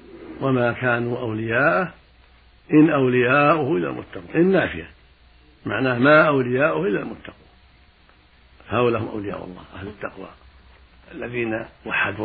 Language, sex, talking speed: Arabic, male, 105 wpm